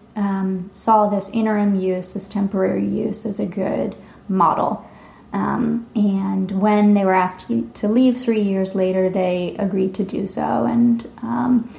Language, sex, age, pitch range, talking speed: English, female, 20-39, 190-215 Hz, 155 wpm